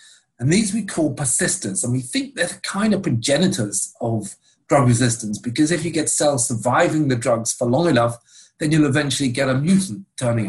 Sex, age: male, 40-59